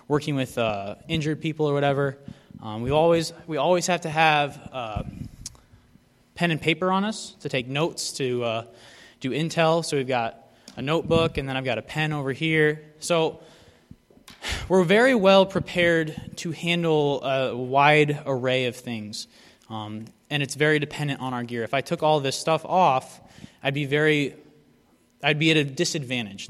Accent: American